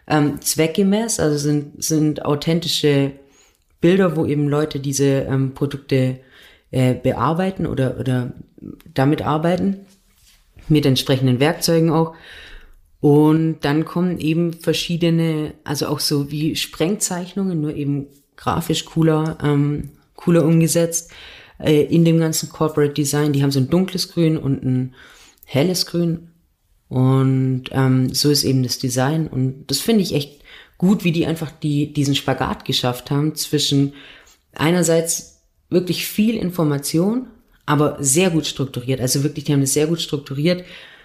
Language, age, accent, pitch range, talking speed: German, 30-49, German, 135-165 Hz, 135 wpm